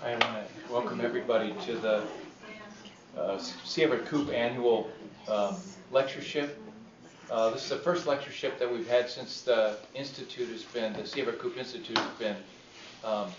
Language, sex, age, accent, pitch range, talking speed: English, male, 40-59, American, 105-130 Hz, 150 wpm